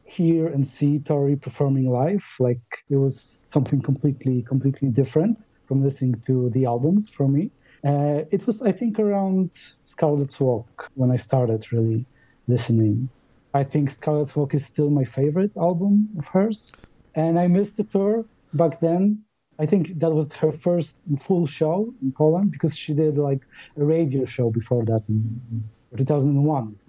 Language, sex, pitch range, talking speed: English, male, 125-155 Hz, 160 wpm